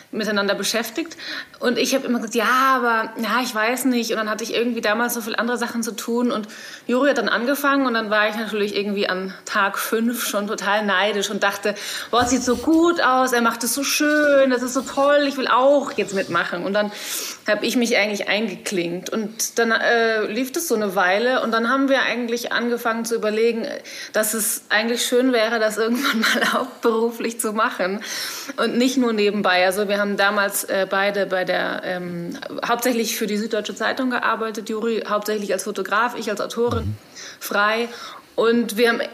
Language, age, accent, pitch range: German, 30-49, German, 205-240 Hz